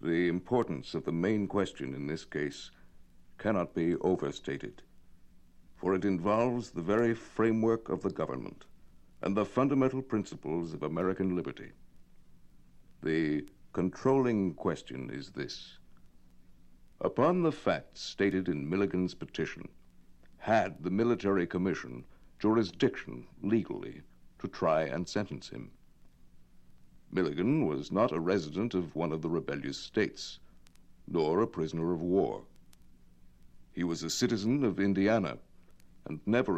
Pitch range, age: 65-105 Hz, 60-79